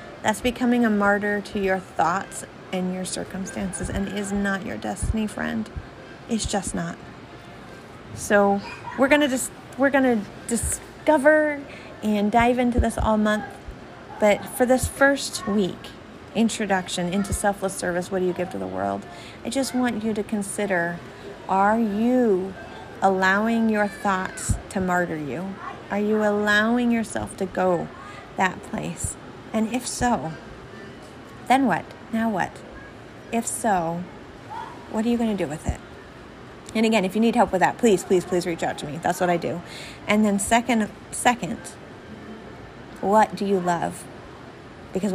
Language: English